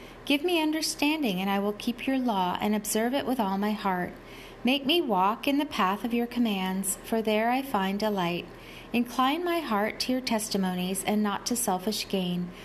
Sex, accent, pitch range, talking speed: female, American, 200-250 Hz, 195 wpm